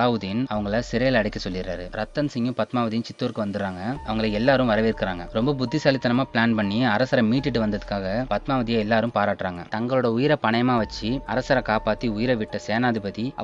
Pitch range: 105-130 Hz